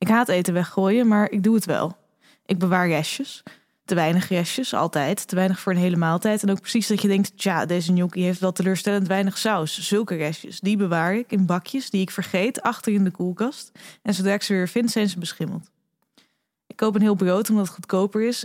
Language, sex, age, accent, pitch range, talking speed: Dutch, female, 20-39, Dutch, 185-220 Hz, 220 wpm